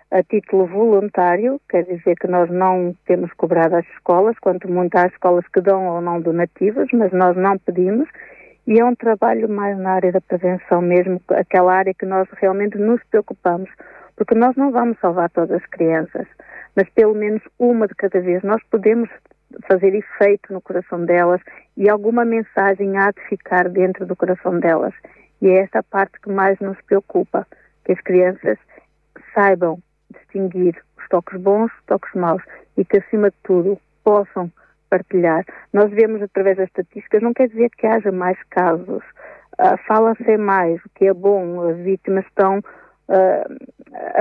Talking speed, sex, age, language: 170 wpm, female, 50-69, Portuguese